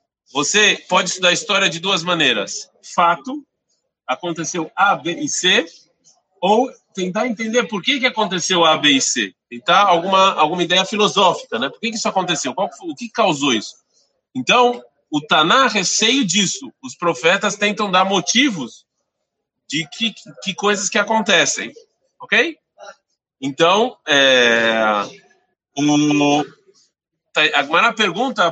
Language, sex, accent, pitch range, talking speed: Portuguese, male, Brazilian, 175-245 Hz, 125 wpm